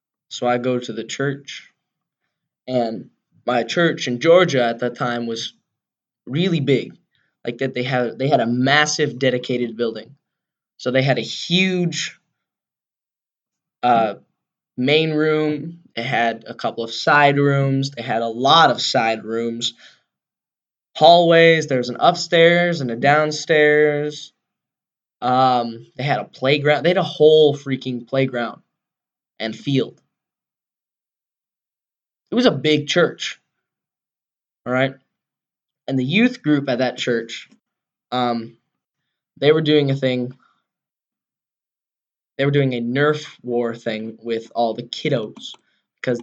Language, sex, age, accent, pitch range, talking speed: English, male, 10-29, American, 120-155 Hz, 130 wpm